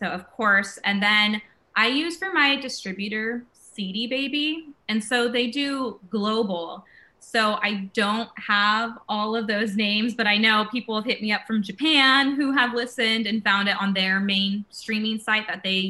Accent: American